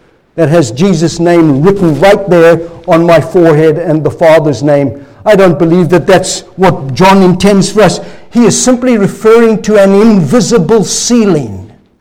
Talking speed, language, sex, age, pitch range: 160 wpm, English, male, 60-79, 195-290 Hz